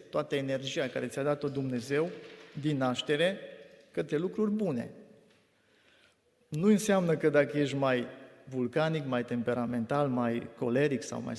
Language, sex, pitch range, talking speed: Romanian, male, 125-160 Hz, 125 wpm